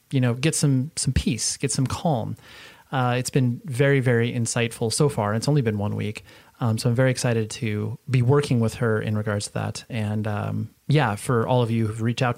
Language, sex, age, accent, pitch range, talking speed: English, male, 30-49, American, 115-140 Hz, 225 wpm